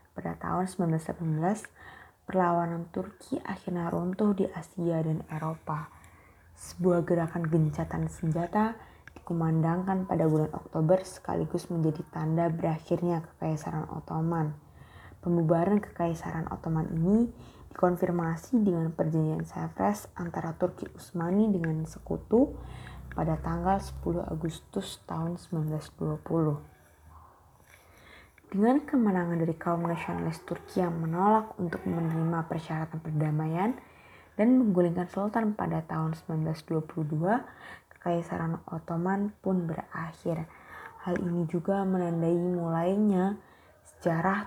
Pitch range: 160-185 Hz